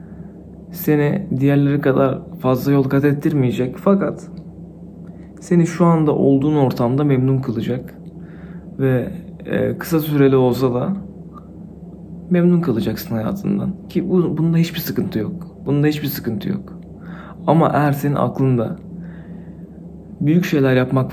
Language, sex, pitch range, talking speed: Turkish, male, 135-175 Hz, 110 wpm